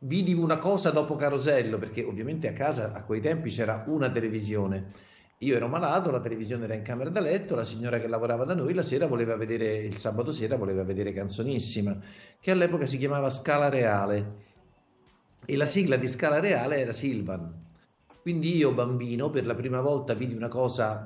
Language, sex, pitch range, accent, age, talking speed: Italian, male, 115-155 Hz, native, 50-69, 185 wpm